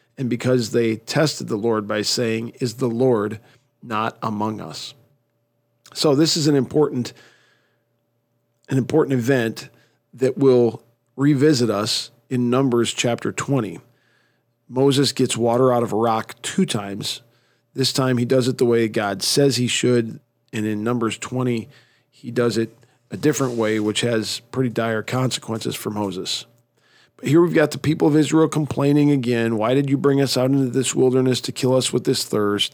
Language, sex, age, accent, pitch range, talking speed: English, male, 40-59, American, 115-135 Hz, 165 wpm